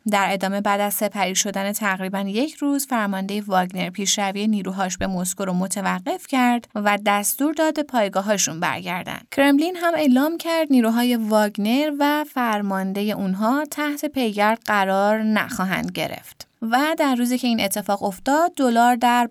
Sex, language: female, Persian